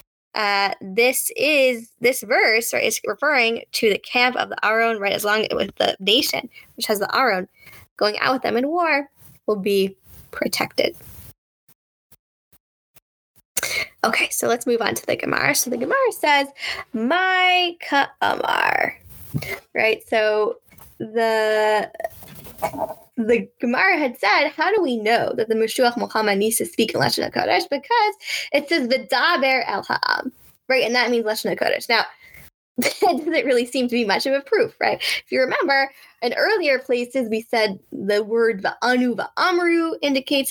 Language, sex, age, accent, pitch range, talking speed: English, female, 10-29, American, 230-330 Hz, 155 wpm